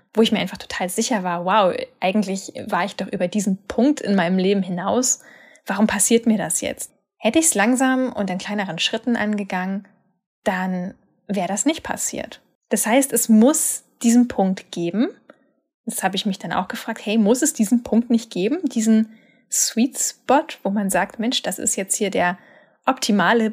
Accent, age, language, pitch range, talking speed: German, 10-29, German, 195-250 Hz, 185 wpm